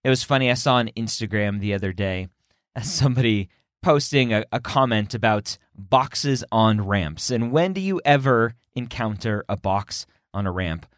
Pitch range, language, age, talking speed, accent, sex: 90-125 Hz, English, 30-49, 165 wpm, American, male